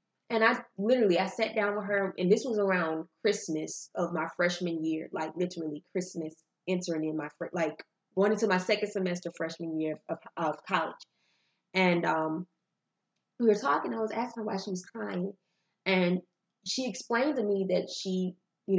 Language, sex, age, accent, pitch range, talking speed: English, female, 20-39, American, 165-195 Hz, 175 wpm